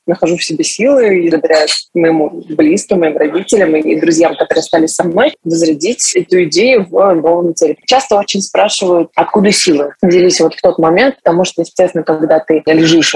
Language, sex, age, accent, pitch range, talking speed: Russian, female, 20-39, native, 160-200 Hz, 175 wpm